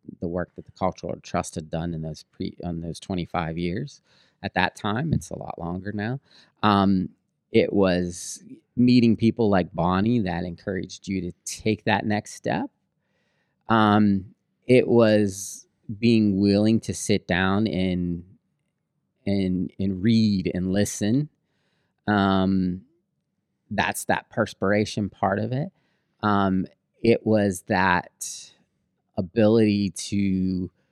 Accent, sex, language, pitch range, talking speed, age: American, male, English, 95-115 Hz, 130 wpm, 30-49